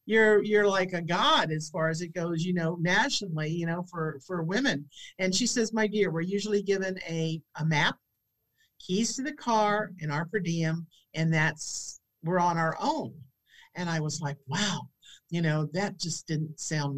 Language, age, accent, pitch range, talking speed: English, 50-69, American, 160-205 Hz, 190 wpm